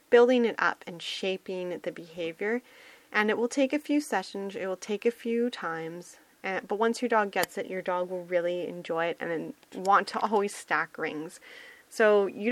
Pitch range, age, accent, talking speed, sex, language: 175-235 Hz, 30-49, American, 190 wpm, female, English